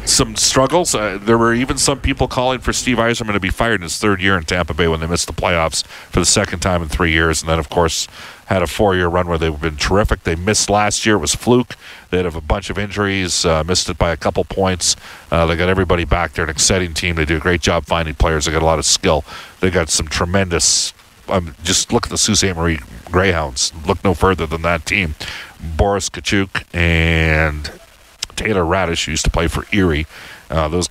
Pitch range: 85-110 Hz